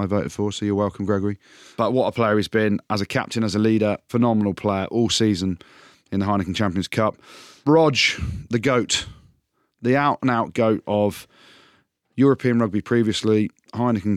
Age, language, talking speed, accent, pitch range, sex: 30-49, English, 165 wpm, British, 95-110 Hz, male